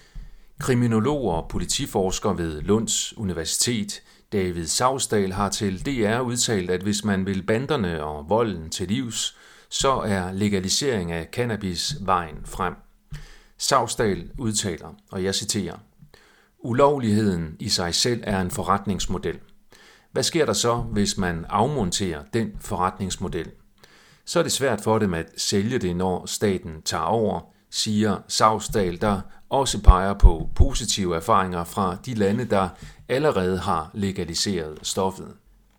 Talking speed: 130 wpm